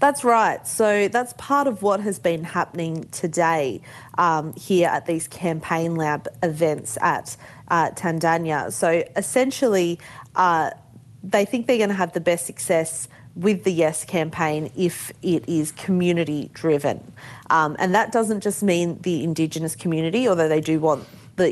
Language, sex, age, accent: English, female, 30-49, Australian